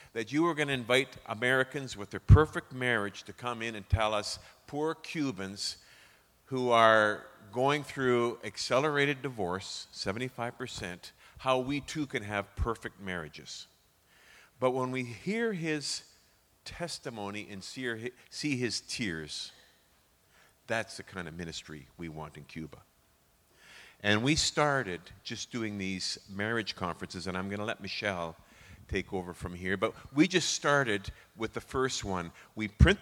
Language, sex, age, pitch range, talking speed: English, male, 50-69, 100-135 Hz, 145 wpm